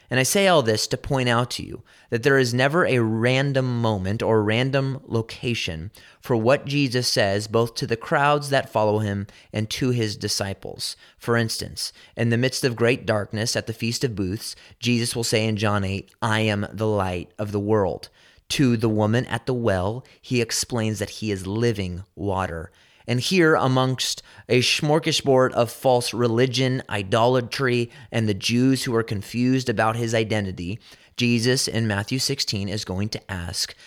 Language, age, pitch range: English, 30-49, 105-130 Hz